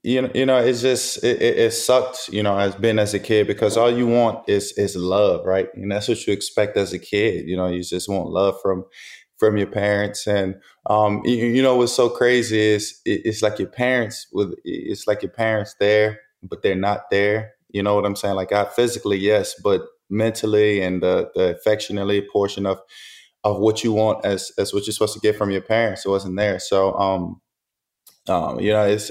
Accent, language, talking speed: American, English, 220 wpm